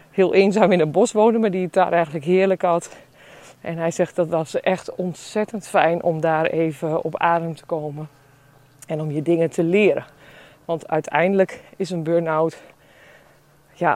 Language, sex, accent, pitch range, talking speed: Dutch, female, Dutch, 170-215 Hz, 170 wpm